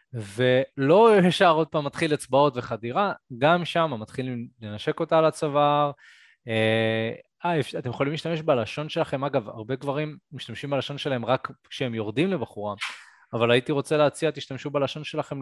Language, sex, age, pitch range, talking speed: Hebrew, male, 20-39, 115-145 Hz, 150 wpm